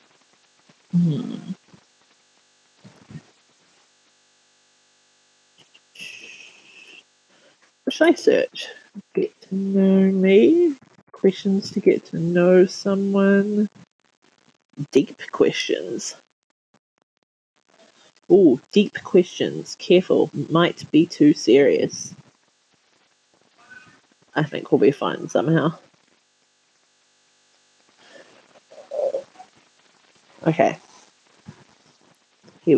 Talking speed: 60 wpm